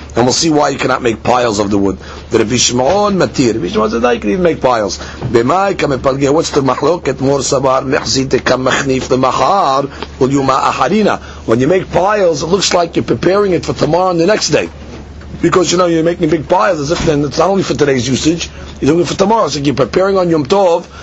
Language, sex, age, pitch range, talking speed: English, male, 40-59, 125-185 Hz, 225 wpm